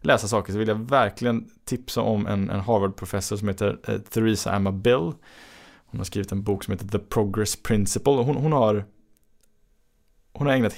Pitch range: 105-145 Hz